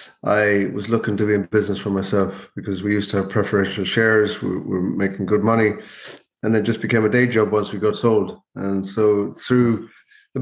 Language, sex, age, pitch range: English, male, 30-49, 100-120 Hz